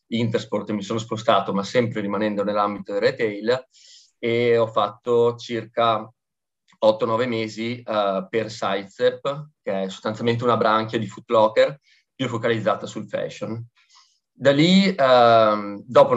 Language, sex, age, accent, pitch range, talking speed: Italian, male, 30-49, native, 110-125 Hz, 130 wpm